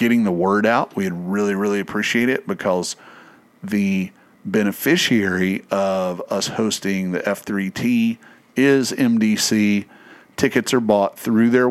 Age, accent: 40-59, American